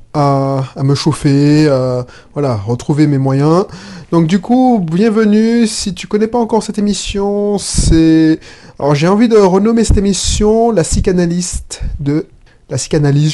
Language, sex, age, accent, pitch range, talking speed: French, male, 30-49, French, 130-165 Hz, 155 wpm